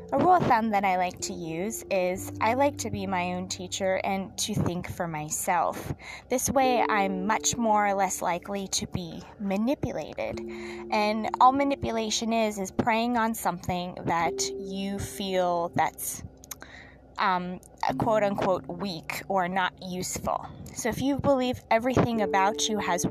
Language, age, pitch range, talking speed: English, 20-39, 175-235 Hz, 155 wpm